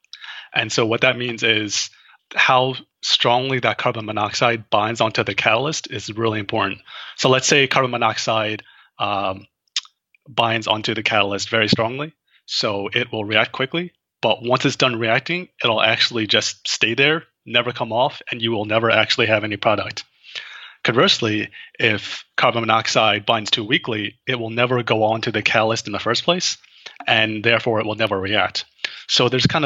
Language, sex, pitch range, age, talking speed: English, male, 110-130 Hz, 30-49, 170 wpm